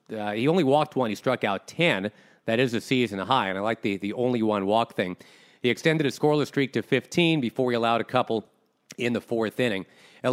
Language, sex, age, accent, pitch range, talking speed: English, male, 40-59, American, 110-140 Hz, 230 wpm